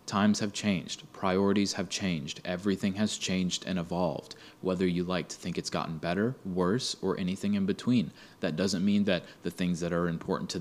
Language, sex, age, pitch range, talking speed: English, male, 20-39, 90-100 Hz, 190 wpm